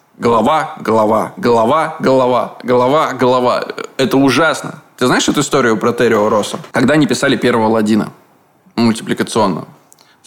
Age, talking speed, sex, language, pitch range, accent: 20-39, 115 wpm, male, Russian, 110-130 Hz, native